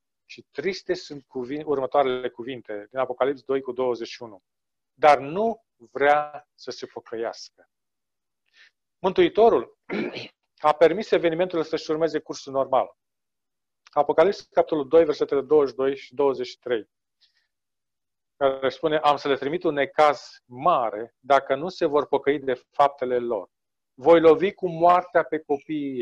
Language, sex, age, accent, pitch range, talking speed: Romanian, male, 40-59, native, 140-175 Hz, 125 wpm